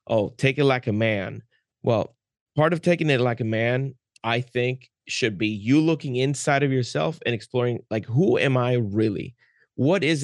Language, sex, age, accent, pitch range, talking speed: English, male, 30-49, American, 110-135 Hz, 190 wpm